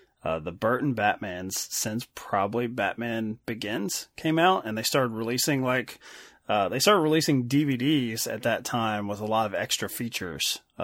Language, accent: English, American